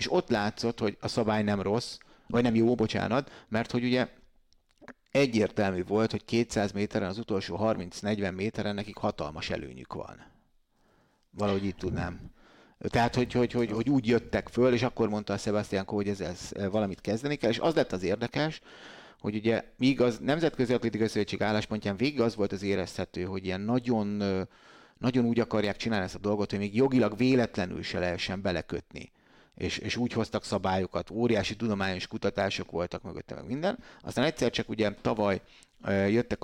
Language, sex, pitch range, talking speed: Hungarian, male, 95-115 Hz, 170 wpm